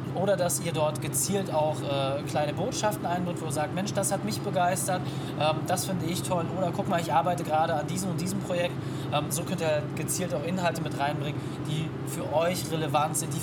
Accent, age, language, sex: German, 20-39, German, male